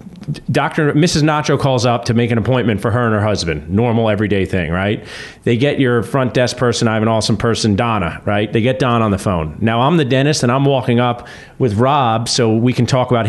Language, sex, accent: English, male, American